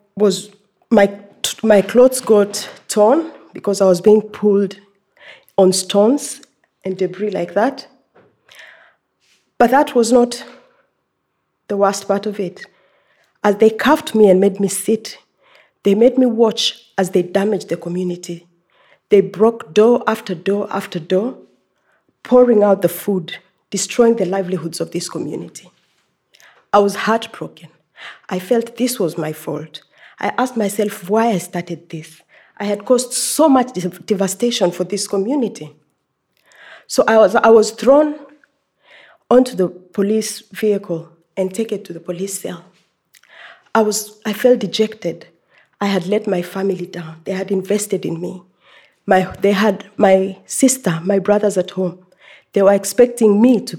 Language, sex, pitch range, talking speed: English, female, 185-220 Hz, 145 wpm